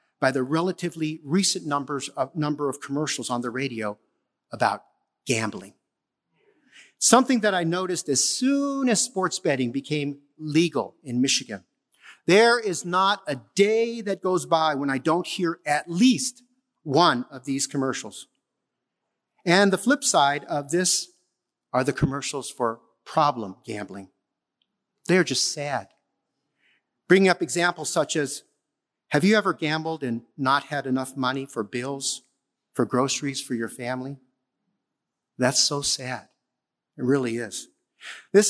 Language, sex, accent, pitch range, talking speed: English, male, American, 130-185 Hz, 135 wpm